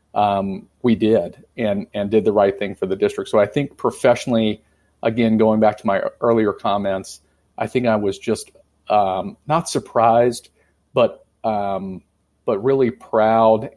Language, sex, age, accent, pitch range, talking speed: English, male, 40-59, American, 100-125 Hz, 155 wpm